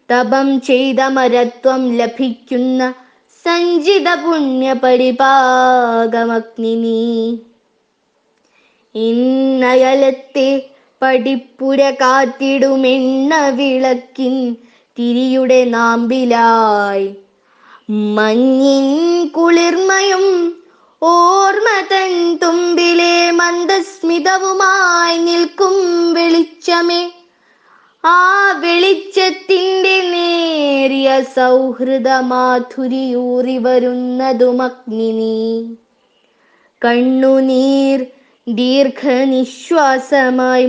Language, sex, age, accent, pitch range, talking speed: Malayalam, female, 20-39, native, 255-345 Hz, 40 wpm